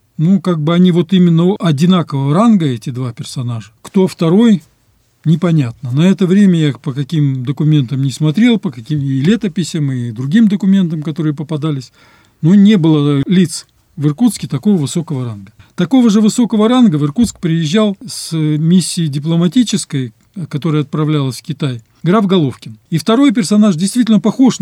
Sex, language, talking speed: male, Russian, 150 wpm